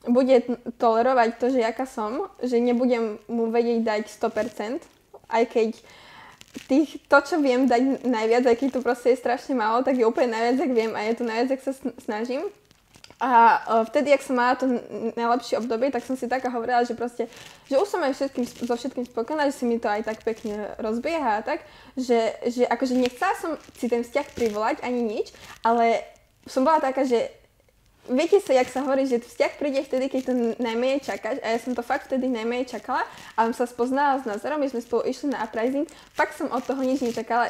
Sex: female